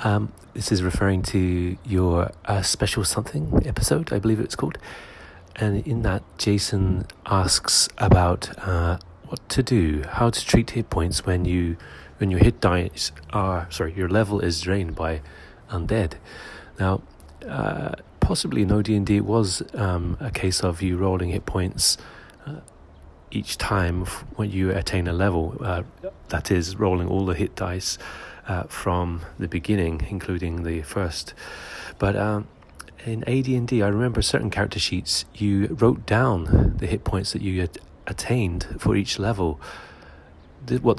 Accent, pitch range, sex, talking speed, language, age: British, 85-105 Hz, male, 155 wpm, English, 30-49